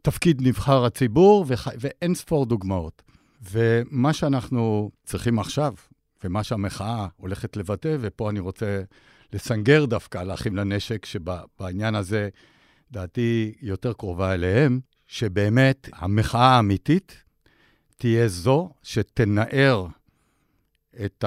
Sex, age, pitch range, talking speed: male, 60-79, 100-130 Hz, 100 wpm